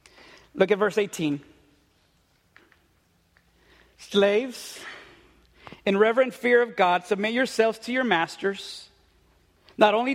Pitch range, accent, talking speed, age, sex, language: 175-220 Hz, American, 100 wpm, 40-59, male, English